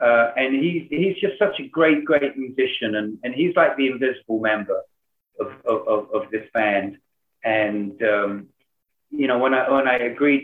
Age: 40-59